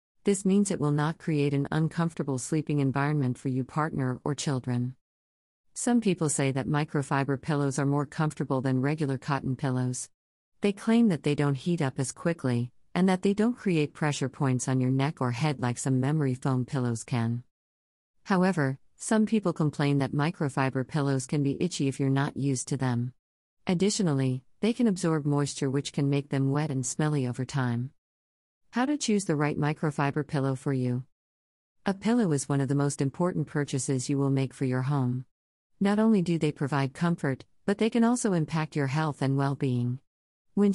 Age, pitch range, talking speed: 40-59, 130-165 Hz, 185 wpm